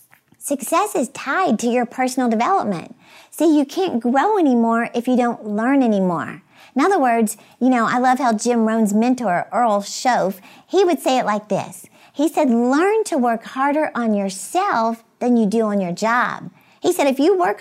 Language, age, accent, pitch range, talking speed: English, 50-69, American, 220-290 Hz, 185 wpm